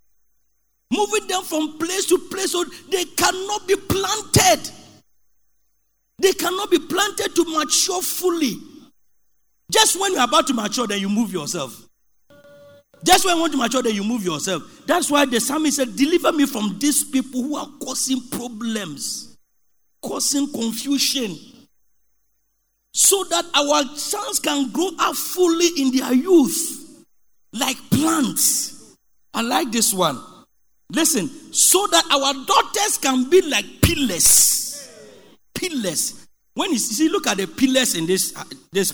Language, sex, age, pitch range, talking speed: English, male, 40-59, 260-360 Hz, 145 wpm